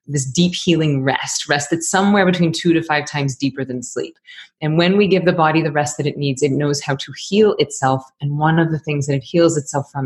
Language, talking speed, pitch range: English, 250 wpm, 140-170 Hz